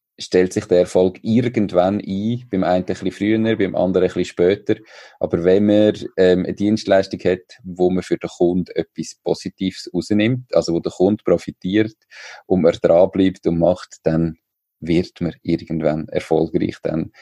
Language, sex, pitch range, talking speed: German, male, 90-105 Hz, 165 wpm